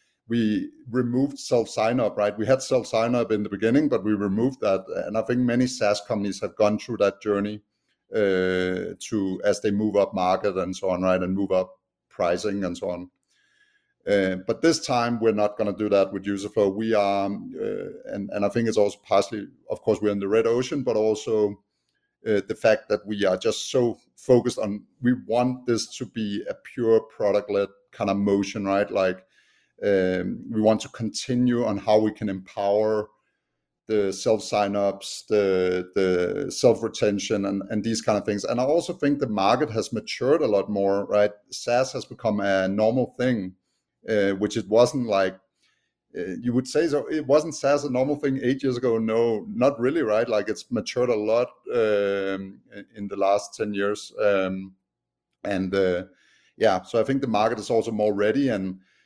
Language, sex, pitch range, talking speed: English, male, 100-115 Hz, 190 wpm